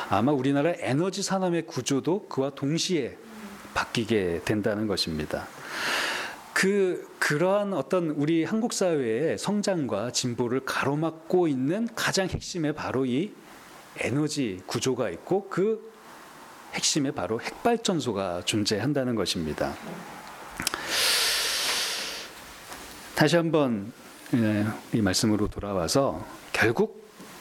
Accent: native